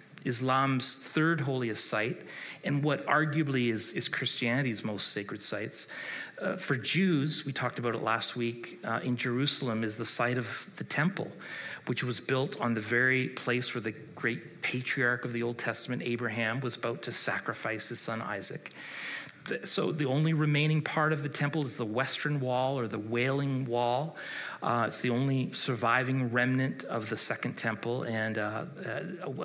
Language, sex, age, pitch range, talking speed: English, male, 40-59, 120-145 Hz, 165 wpm